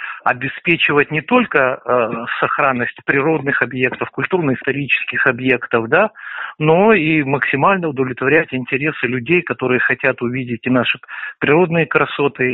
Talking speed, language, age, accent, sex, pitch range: 110 wpm, Russian, 50-69, native, male, 130-160 Hz